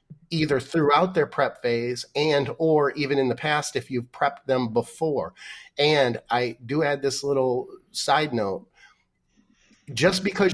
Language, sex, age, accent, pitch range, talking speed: English, male, 30-49, American, 120-145 Hz, 150 wpm